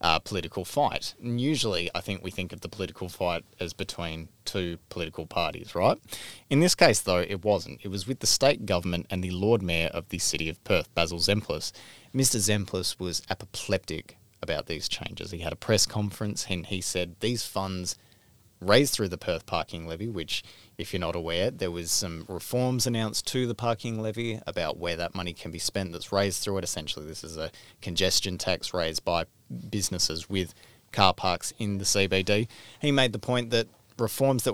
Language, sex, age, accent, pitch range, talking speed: English, male, 20-39, Australian, 90-110 Hz, 195 wpm